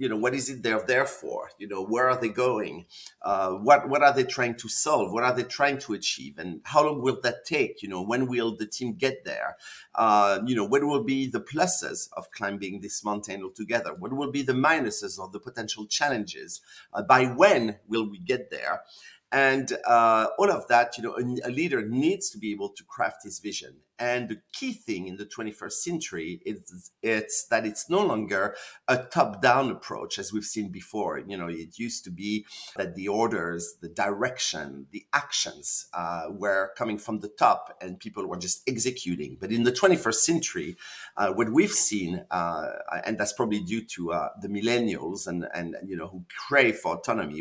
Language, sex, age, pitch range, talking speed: English, male, 50-69, 100-130 Hz, 200 wpm